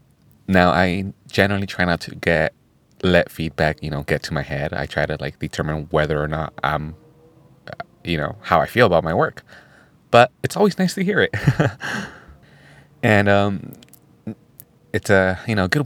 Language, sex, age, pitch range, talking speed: English, male, 30-49, 85-110 Hz, 175 wpm